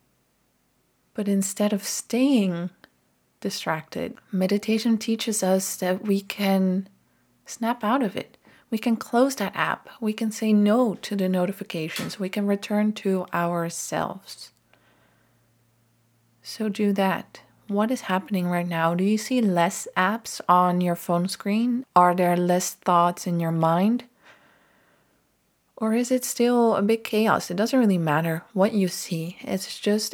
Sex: female